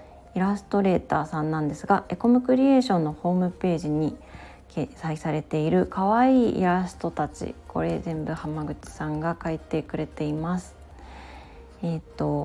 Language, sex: Japanese, female